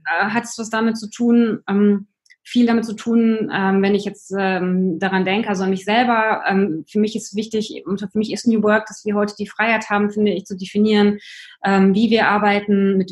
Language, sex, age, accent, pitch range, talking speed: German, female, 20-39, German, 185-225 Hz, 215 wpm